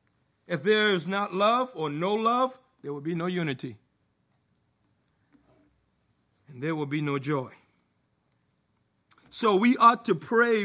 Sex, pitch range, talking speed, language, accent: male, 150-215 Hz, 135 wpm, English, American